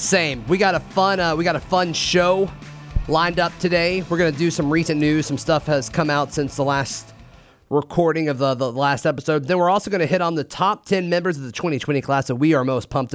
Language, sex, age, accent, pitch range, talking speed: English, male, 30-49, American, 140-175 Hz, 250 wpm